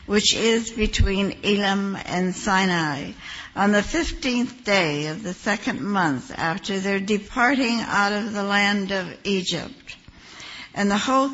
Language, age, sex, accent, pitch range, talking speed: English, 60-79, female, American, 190-220 Hz, 140 wpm